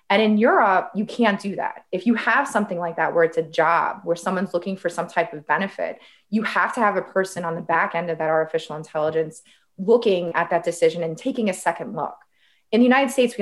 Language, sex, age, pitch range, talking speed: English, female, 20-39, 170-225 Hz, 235 wpm